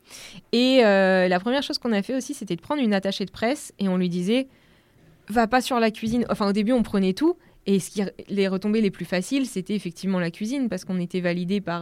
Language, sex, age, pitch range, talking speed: French, female, 20-39, 175-210 Hz, 245 wpm